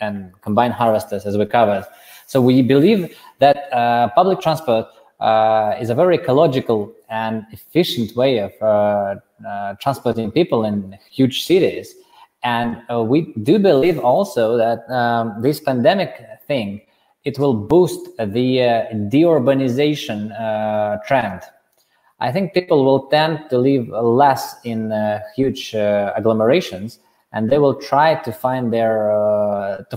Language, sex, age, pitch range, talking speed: English, male, 20-39, 105-135 Hz, 140 wpm